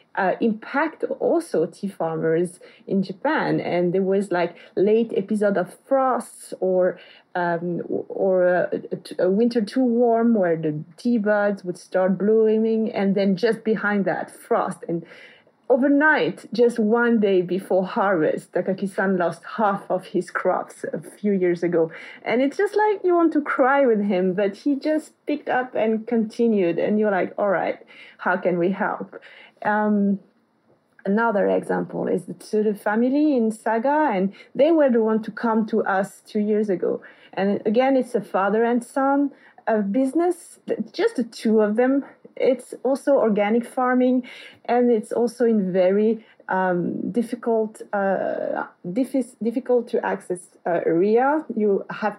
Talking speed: 155 wpm